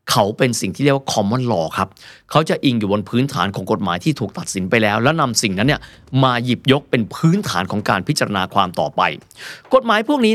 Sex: male